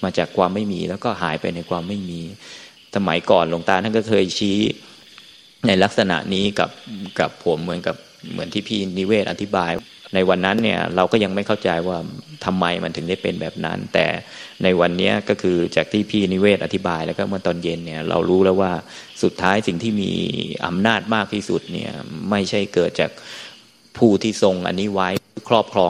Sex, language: male, Thai